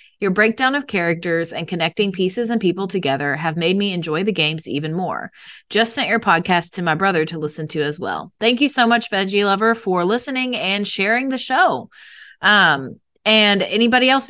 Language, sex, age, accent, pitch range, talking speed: English, female, 30-49, American, 170-215 Hz, 195 wpm